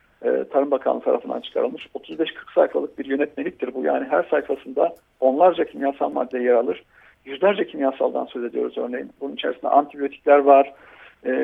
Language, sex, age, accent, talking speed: Turkish, male, 50-69, native, 145 wpm